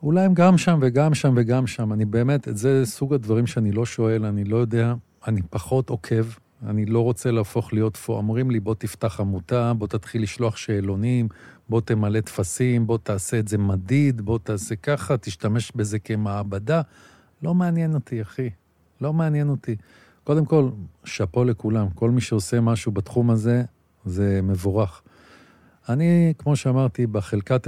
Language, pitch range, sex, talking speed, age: Hebrew, 105-125 Hz, male, 165 wpm, 50-69